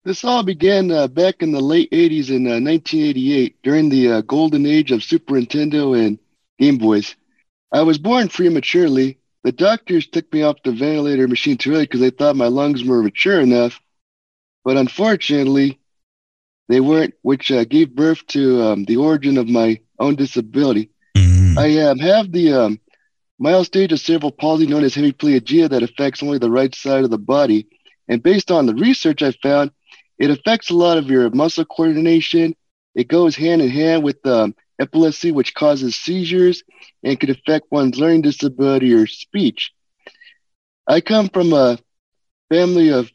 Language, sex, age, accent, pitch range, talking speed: English, male, 30-49, American, 125-170 Hz, 170 wpm